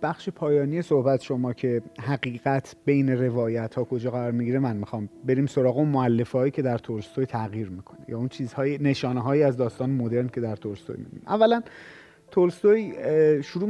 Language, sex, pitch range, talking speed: Persian, male, 120-165 Hz, 165 wpm